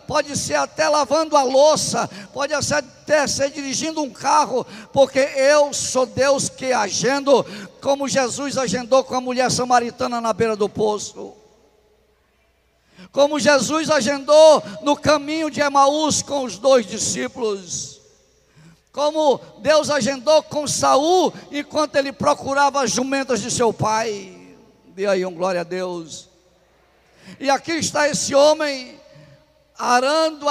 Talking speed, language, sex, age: 130 wpm, Portuguese, male, 50-69